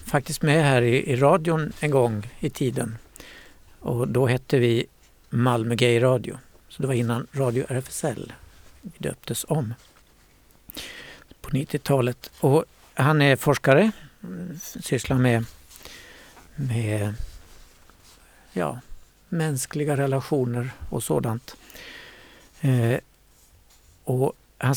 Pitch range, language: 120-145 Hz, Swedish